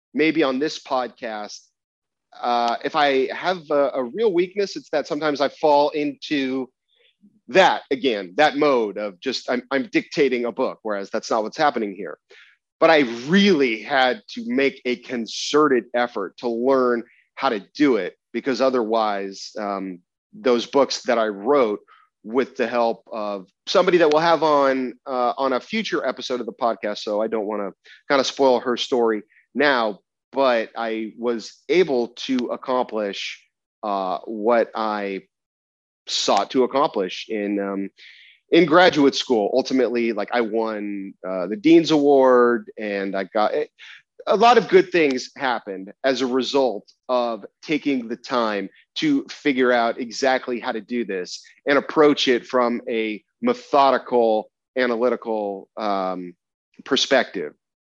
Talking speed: 150 wpm